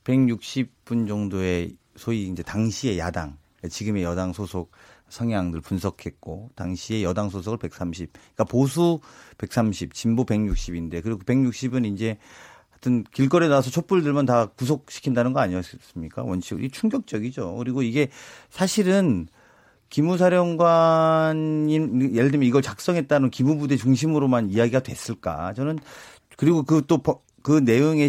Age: 40-59